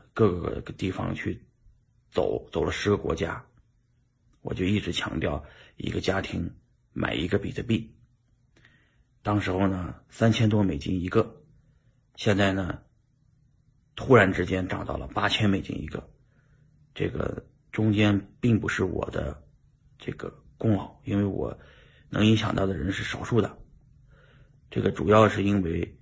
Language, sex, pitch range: Chinese, male, 100-125 Hz